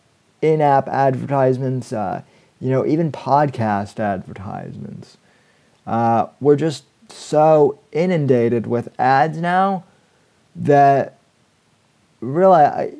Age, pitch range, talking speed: 30-49, 120-145 Hz, 85 wpm